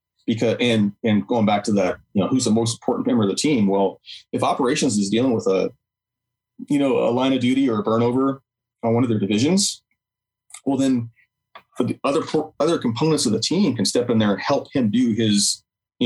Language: English